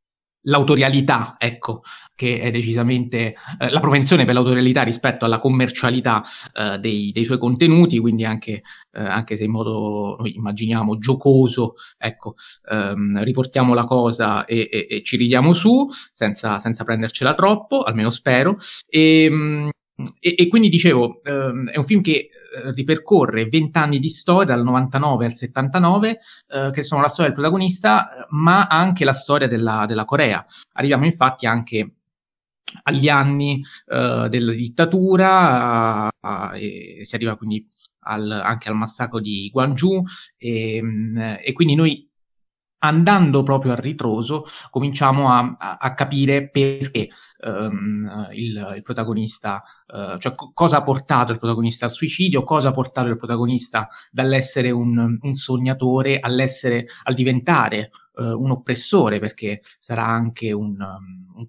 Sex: male